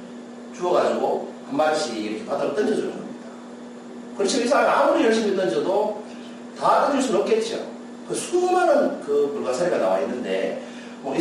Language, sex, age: Korean, male, 40-59